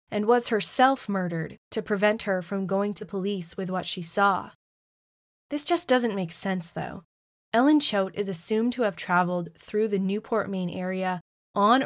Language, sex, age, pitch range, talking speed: English, female, 20-39, 185-220 Hz, 170 wpm